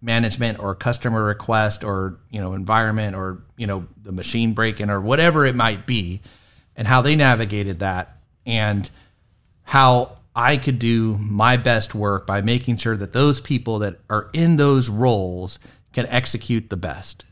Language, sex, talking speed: English, male, 165 wpm